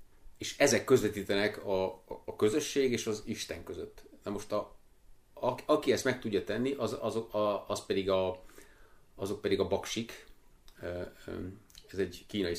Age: 30-49